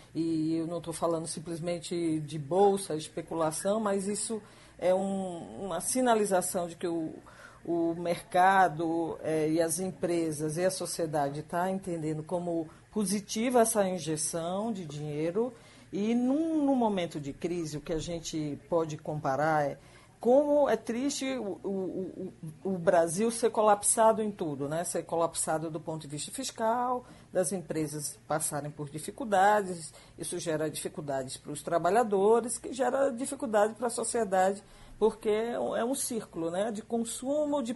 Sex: female